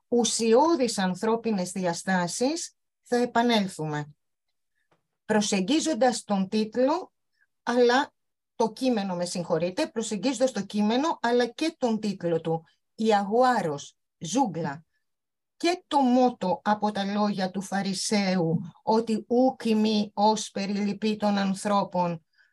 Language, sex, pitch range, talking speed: Greek, female, 180-250 Hz, 95 wpm